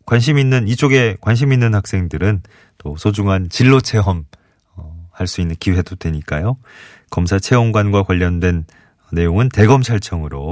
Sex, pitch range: male, 85-125 Hz